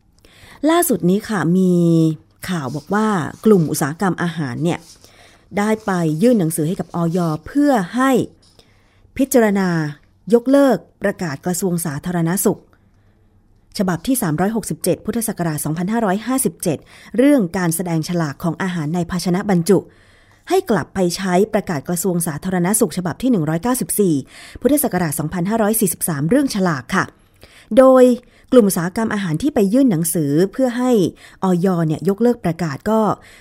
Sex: female